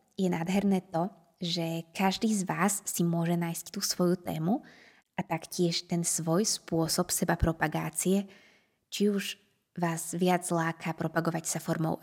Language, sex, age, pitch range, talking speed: Slovak, female, 20-39, 165-190 Hz, 140 wpm